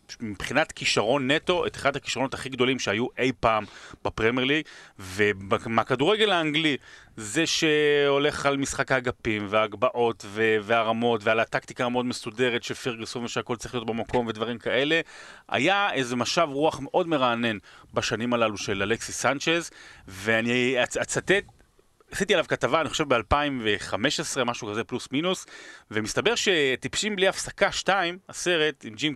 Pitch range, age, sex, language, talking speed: 115-160 Hz, 30-49, male, Hebrew, 135 wpm